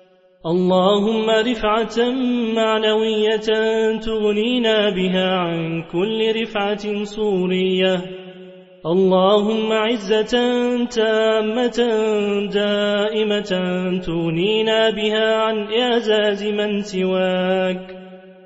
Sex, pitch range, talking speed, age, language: male, 185-220 Hz, 60 wpm, 30-49, Turkish